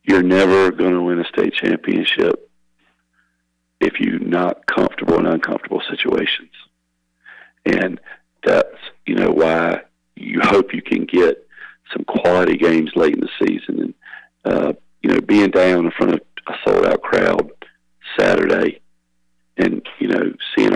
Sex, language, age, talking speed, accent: male, English, 40-59, 140 wpm, American